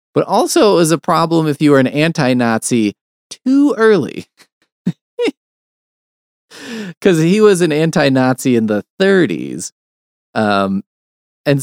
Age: 20-39